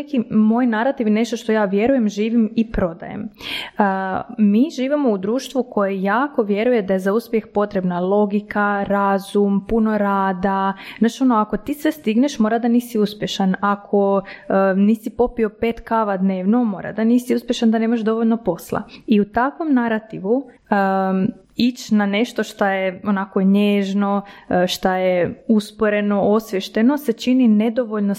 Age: 20-39